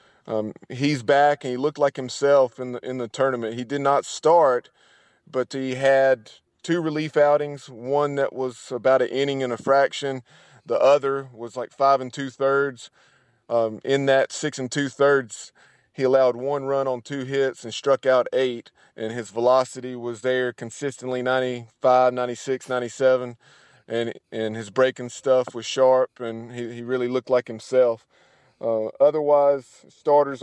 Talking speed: 160 wpm